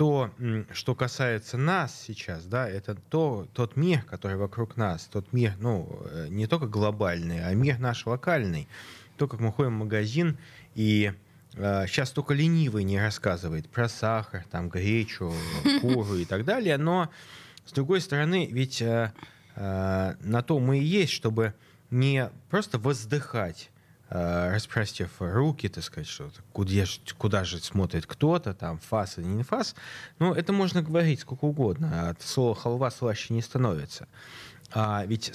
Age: 20-39